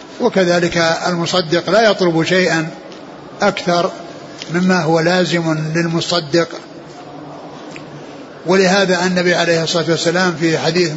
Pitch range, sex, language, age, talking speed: 170-190 Hz, male, Arabic, 60-79, 95 wpm